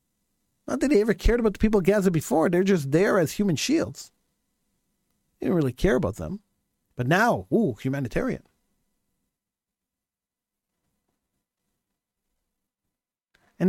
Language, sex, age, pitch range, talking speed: English, male, 50-69, 140-210 Hz, 125 wpm